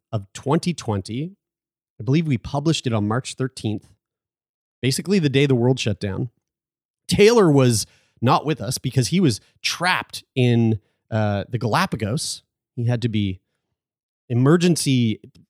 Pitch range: 110-145 Hz